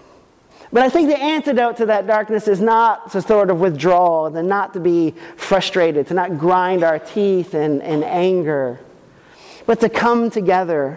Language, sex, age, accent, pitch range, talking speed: English, male, 40-59, American, 160-215 Hz, 165 wpm